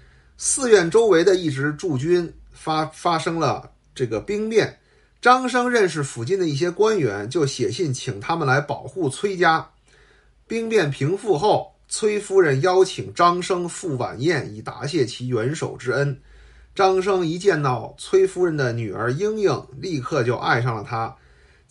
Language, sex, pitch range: Chinese, male, 125-190 Hz